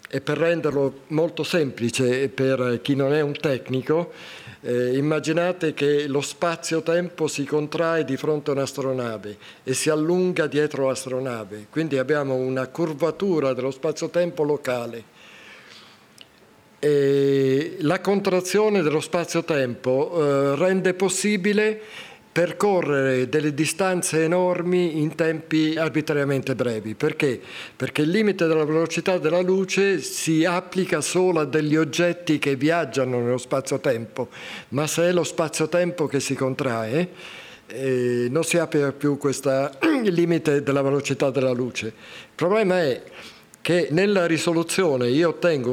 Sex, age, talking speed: male, 50-69, 120 wpm